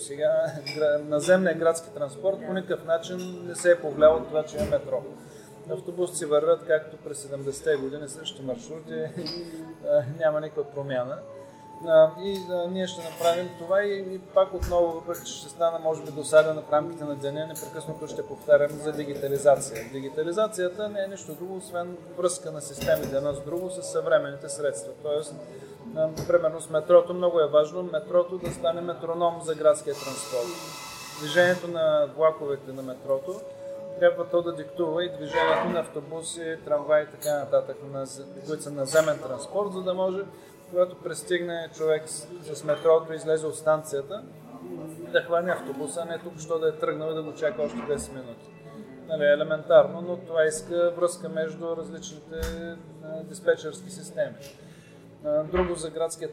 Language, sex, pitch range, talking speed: Bulgarian, male, 150-175 Hz, 155 wpm